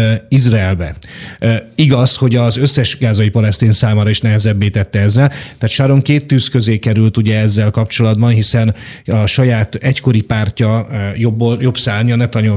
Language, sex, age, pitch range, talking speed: Hungarian, male, 30-49, 110-130 Hz, 145 wpm